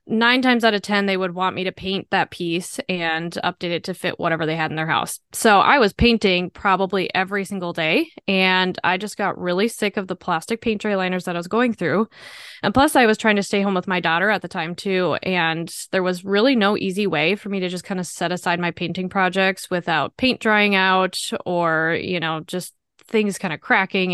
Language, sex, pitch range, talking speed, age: English, female, 180-225 Hz, 235 wpm, 20-39